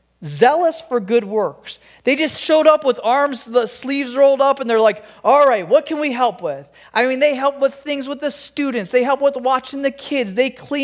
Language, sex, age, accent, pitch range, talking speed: English, male, 20-39, American, 225-280 Hz, 215 wpm